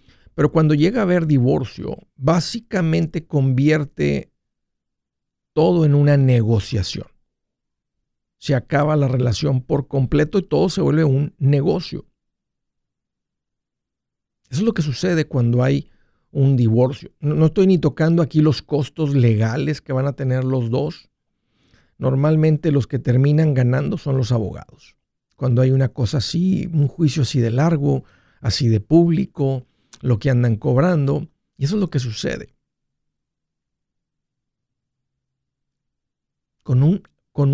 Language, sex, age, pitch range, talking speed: Spanish, male, 50-69, 130-155 Hz, 130 wpm